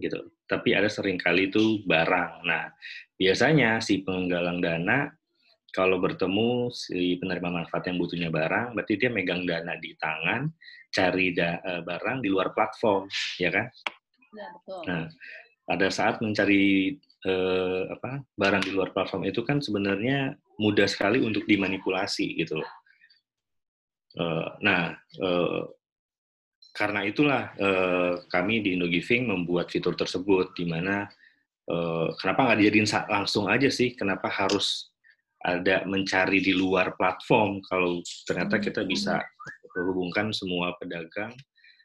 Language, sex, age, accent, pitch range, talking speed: Indonesian, male, 30-49, native, 90-105 Hz, 120 wpm